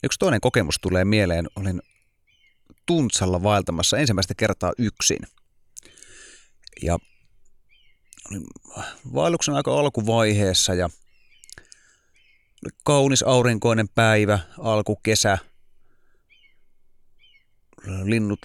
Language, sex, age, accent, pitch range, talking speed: Finnish, male, 30-49, native, 95-125 Hz, 70 wpm